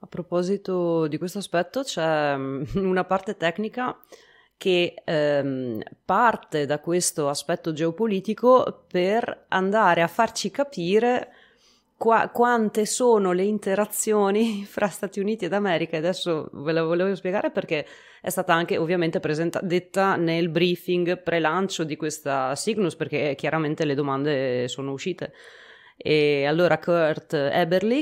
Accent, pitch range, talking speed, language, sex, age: native, 150-200 Hz, 130 wpm, Italian, female, 30-49